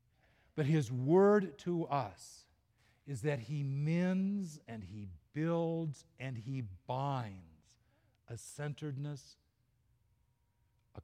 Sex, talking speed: male, 100 wpm